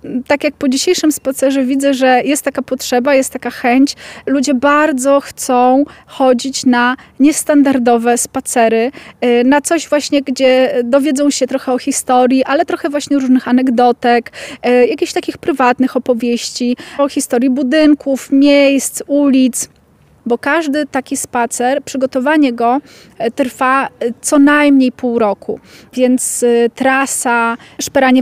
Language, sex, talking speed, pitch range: Polish, female, 120 wpm, 245-280 Hz